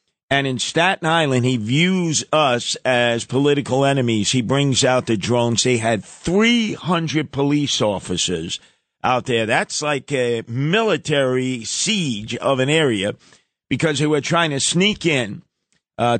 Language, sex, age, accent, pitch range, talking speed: English, male, 50-69, American, 130-160 Hz, 140 wpm